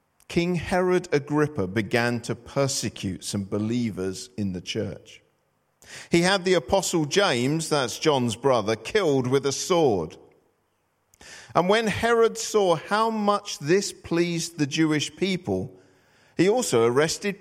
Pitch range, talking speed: 110-180 Hz, 130 wpm